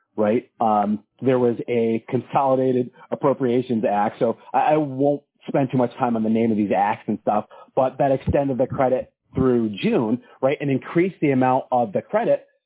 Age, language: 40-59, English